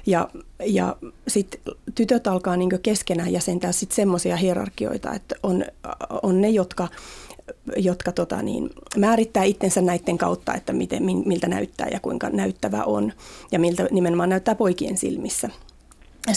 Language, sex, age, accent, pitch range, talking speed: Finnish, female, 30-49, native, 175-230 Hz, 135 wpm